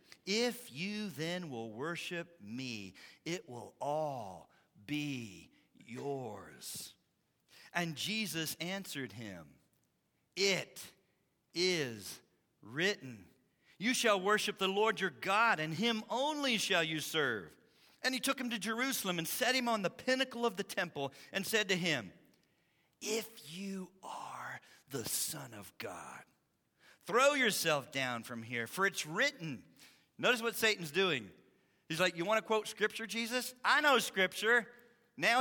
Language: English